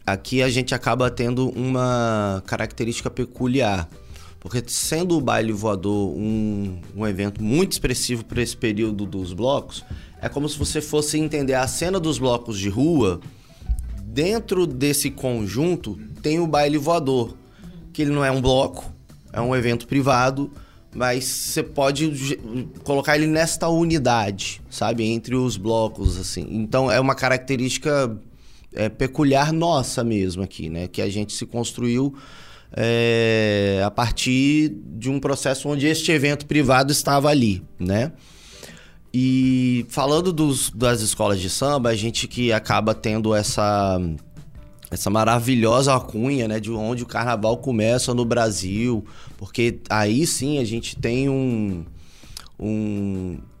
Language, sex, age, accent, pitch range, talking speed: Portuguese, male, 20-39, Brazilian, 105-135 Hz, 140 wpm